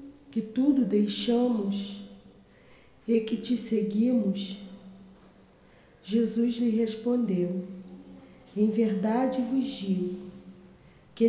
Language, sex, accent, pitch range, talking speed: Portuguese, female, Brazilian, 190-240 Hz, 80 wpm